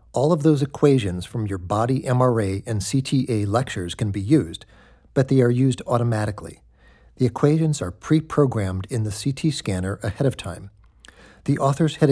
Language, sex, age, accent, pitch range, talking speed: English, male, 50-69, American, 100-130 Hz, 165 wpm